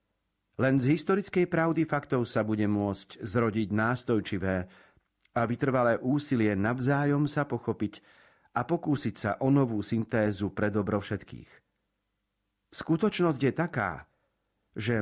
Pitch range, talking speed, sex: 100-135 Hz, 115 wpm, male